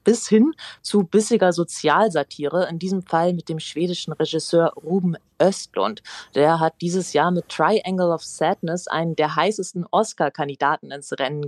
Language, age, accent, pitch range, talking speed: German, 30-49, German, 165-200 Hz, 145 wpm